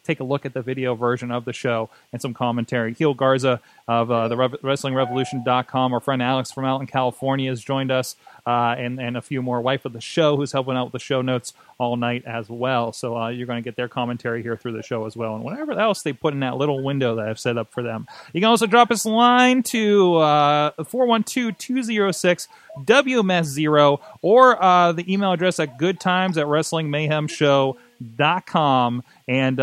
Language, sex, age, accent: English, male, 30-49, American